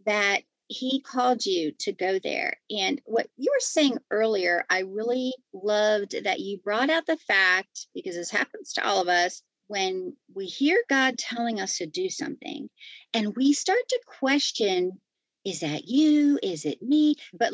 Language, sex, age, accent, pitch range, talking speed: English, female, 40-59, American, 200-290 Hz, 170 wpm